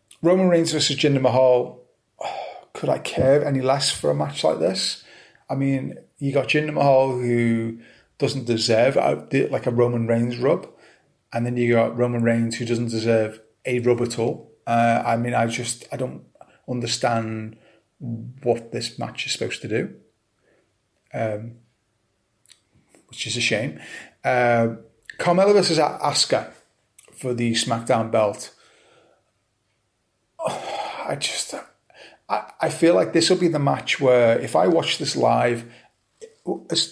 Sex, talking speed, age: male, 145 wpm, 30-49